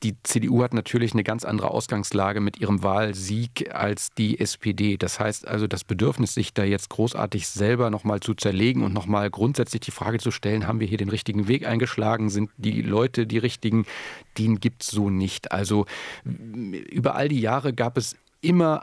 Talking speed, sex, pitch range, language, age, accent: 190 wpm, male, 105-125 Hz, German, 40-59, German